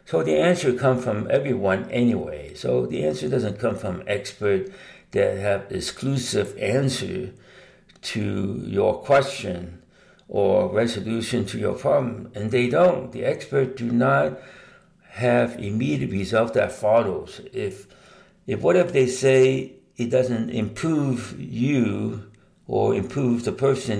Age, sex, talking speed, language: 60-79, male, 130 wpm, English